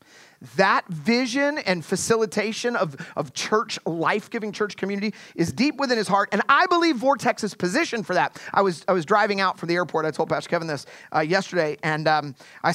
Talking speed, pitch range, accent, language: 200 wpm, 155-210 Hz, American, English